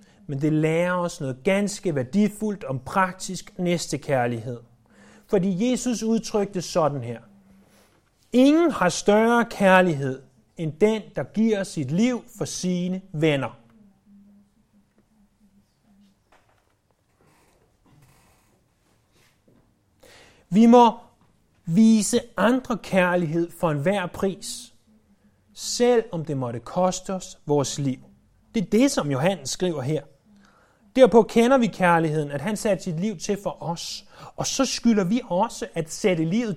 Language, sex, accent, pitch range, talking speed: Danish, male, native, 150-220 Hz, 115 wpm